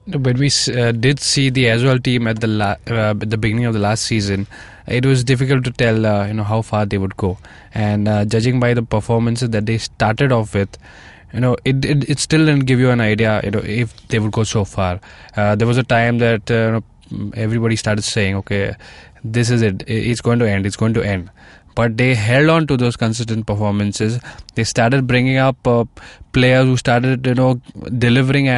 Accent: Indian